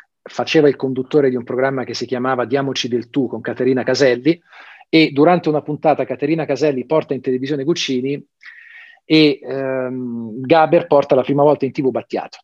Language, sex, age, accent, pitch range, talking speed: Italian, male, 40-59, native, 130-170 Hz, 170 wpm